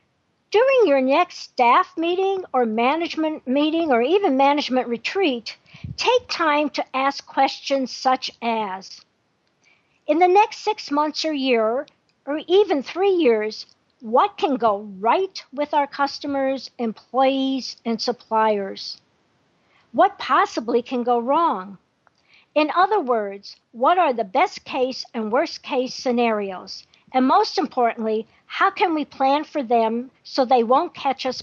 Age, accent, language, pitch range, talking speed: 50-69, American, English, 235-315 Hz, 135 wpm